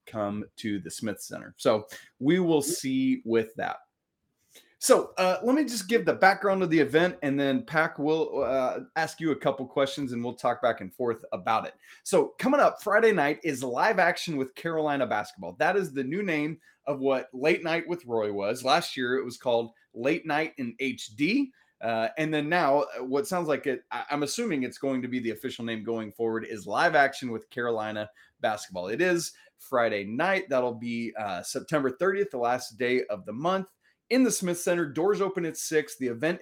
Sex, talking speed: male, 200 wpm